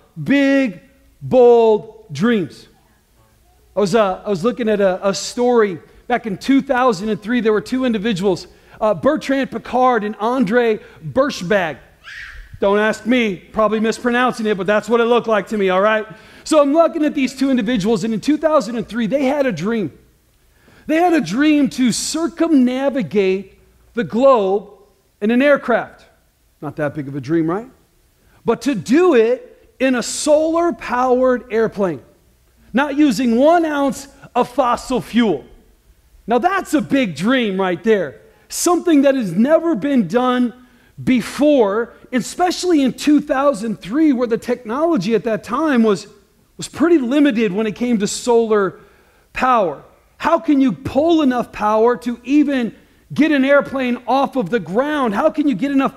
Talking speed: 150 wpm